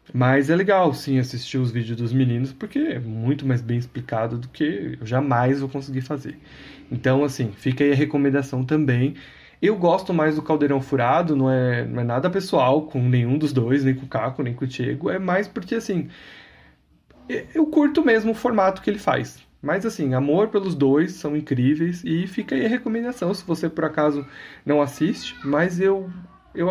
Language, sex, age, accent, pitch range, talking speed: Portuguese, male, 20-39, Brazilian, 135-180 Hz, 190 wpm